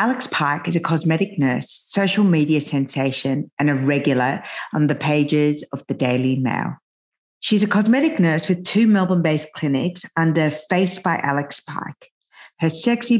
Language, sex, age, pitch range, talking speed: English, female, 50-69, 145-190 Hz, 155 wpm